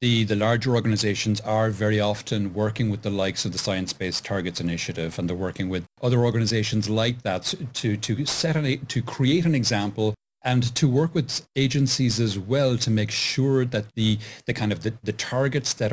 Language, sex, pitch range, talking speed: English, male, 105-135 Hz, 190 wpm